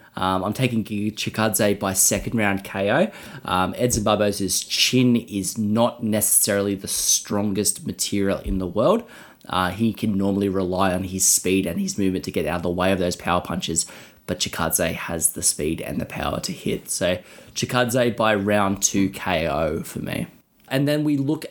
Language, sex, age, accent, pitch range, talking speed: English, male, 20-39, Australian, 100-120 Hz, 180 wpm